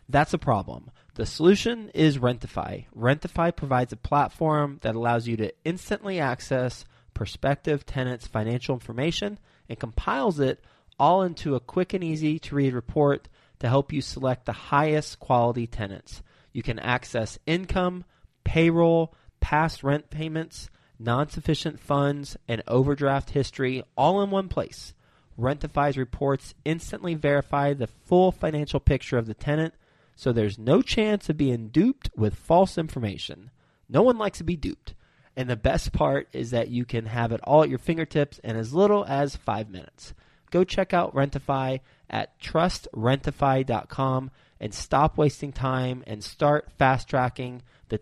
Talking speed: 145 wpm